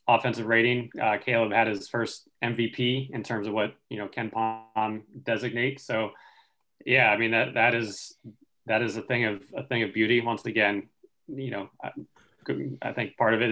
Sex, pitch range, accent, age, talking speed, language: male, 110-125 Hz, American, 20-39, 190 wpm, English